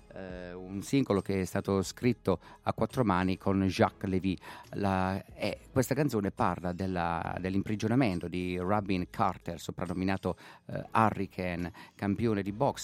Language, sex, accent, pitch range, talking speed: Italian, male, native, 90-110 Hz, 135 wpm